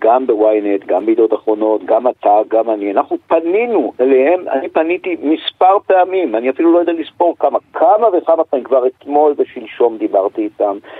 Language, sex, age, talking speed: Hebrew, male, 50-69, 165 wpm